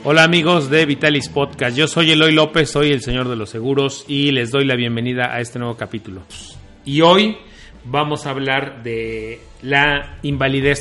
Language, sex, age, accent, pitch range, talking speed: Spanish, male, 40-59, Mexican, 115-150 Hz, 180 wpm